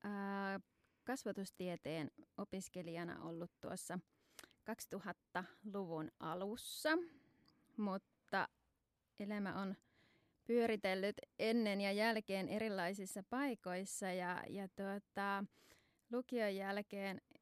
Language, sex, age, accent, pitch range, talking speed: Finnish, female, 20-39, native, 195-230 Hz, 70 wpm